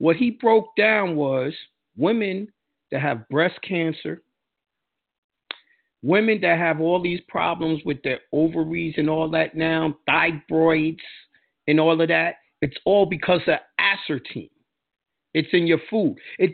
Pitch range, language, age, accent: 160-230 Hz, English, 50-69, American